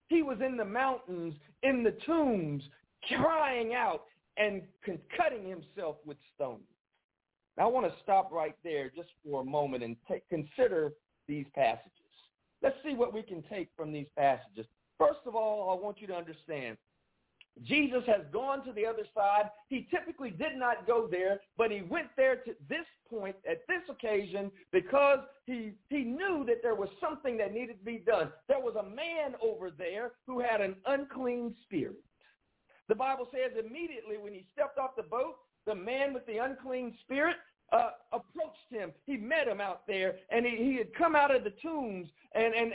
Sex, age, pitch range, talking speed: male, 50-69, 185-270 Hz, 180 wpm